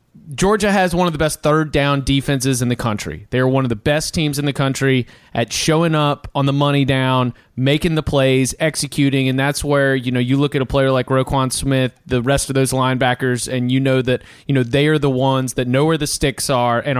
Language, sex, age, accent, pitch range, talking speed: English, male, 30-49, American, 130-180 Hz, 240 wpm